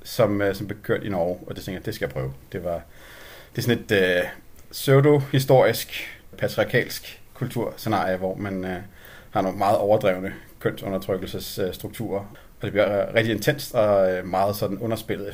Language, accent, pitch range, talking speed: Danish, native, 95-120 Hz, 170 wpm